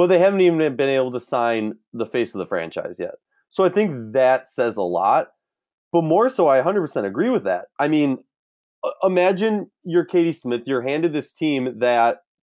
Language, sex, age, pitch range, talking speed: English, male, 30-49, 110-155 Hz, 190 wpm